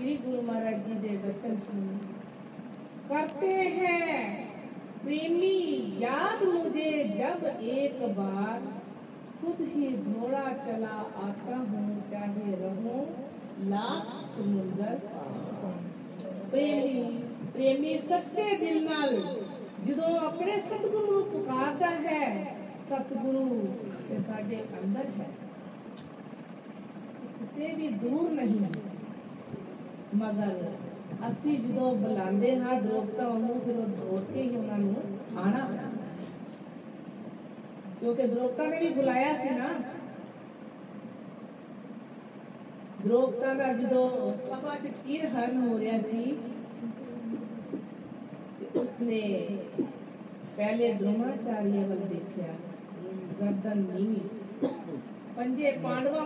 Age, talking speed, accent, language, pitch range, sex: 40-59, 75 wpm, native, Hindi, 210-270 Hz, female